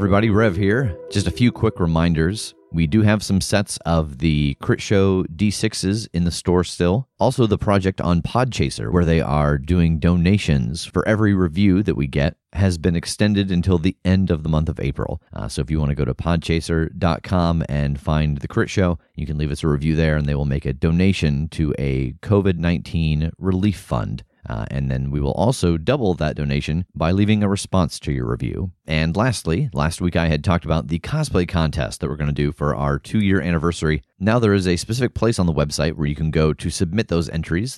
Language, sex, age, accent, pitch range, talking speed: English, male, 30-49, American, 75-100 Hz, 215 wpm